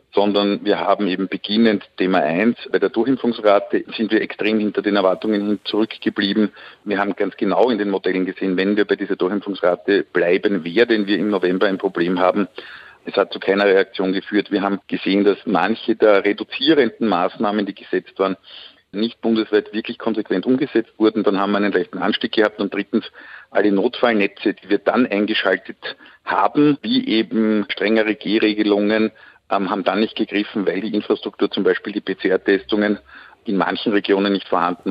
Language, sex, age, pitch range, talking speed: German, male, 50-69, 100-110 Hz, 170 wpm